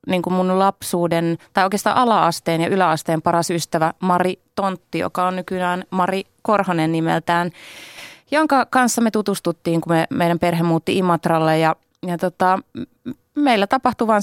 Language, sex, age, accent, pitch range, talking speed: Finnish, female, 30-49, native, 150-180 Hz, 140 wpm